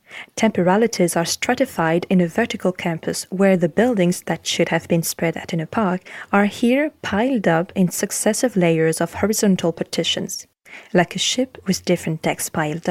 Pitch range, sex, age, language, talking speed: 180-210 Hz, female, 20-39, French, 165 wpm